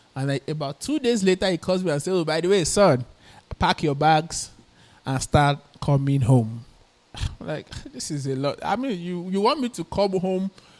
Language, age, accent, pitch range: English, 20-39, Nigerian, 130-175 Hz